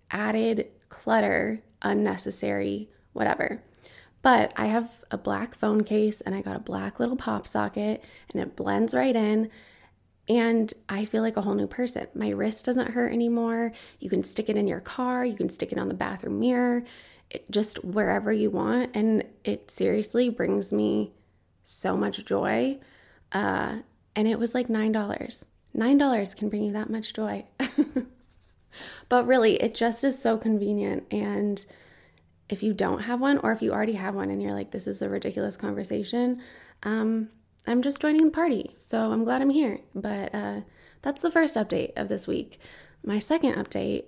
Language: English